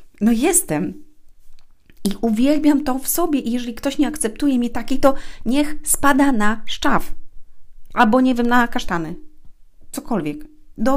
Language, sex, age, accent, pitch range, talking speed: Polish, female, 30-49, native, 225-280 Hz, 140 wpm